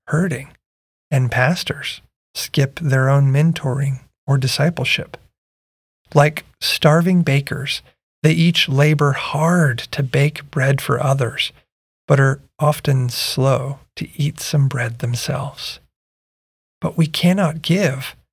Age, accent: 40-59, American